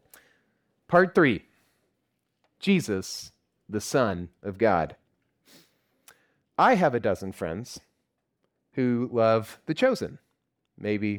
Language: English